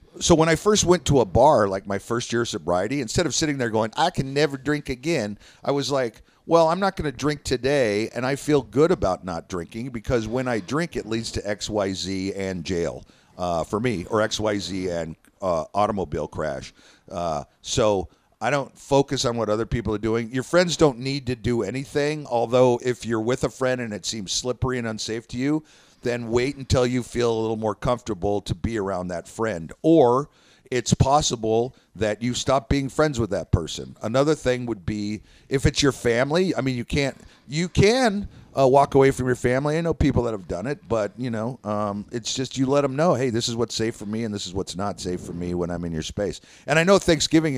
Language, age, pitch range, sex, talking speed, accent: English, 50-69, 105-140 Hz, male, 230 wpm, American